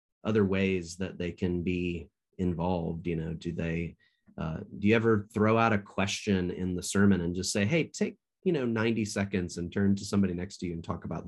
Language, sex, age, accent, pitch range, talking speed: English, male, 30-49, American, 85-100 Hz, 220 wpm